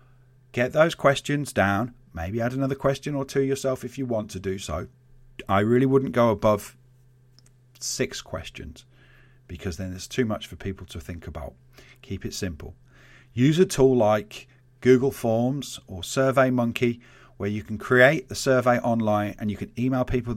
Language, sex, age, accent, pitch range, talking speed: English, male, 40-59, British, 95-130 Hz, 170 wpm